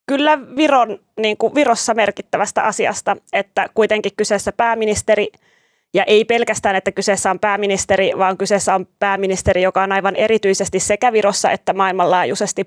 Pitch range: 185-210 Hz